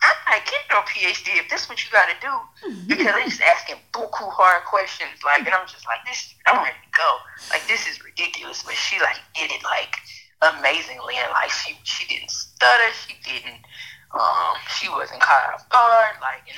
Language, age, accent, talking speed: English, 20-39, American, 205 wpm